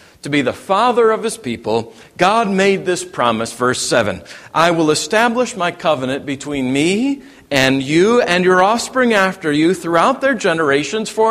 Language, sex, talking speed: English, male, 165 wpm